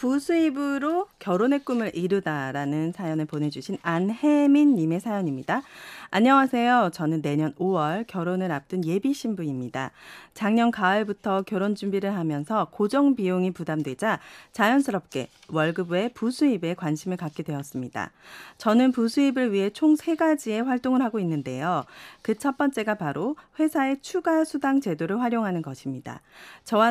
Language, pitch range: Korean, 165-250 Hz